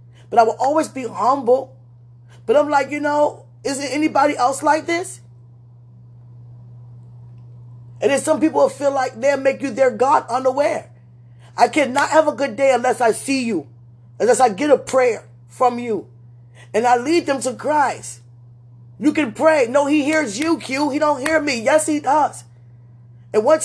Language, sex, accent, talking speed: English, male, American, 175 wpm